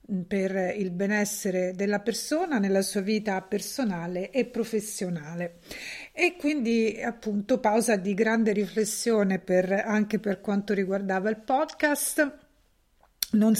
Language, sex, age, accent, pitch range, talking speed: Italian, female, 50-69, native, 195-225 Hz, 115 wpm